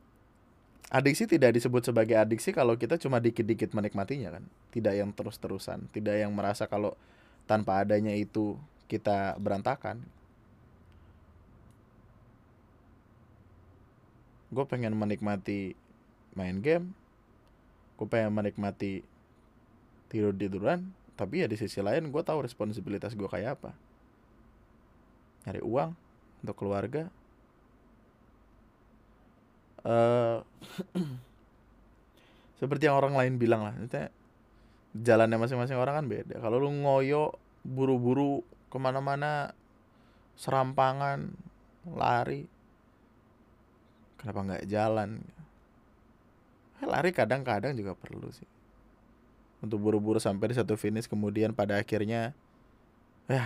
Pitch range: 105-125 Hz